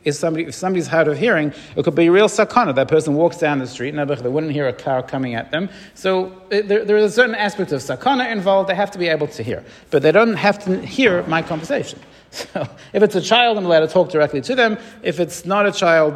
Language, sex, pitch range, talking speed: English, male, 130-175 Hz, 260 wpm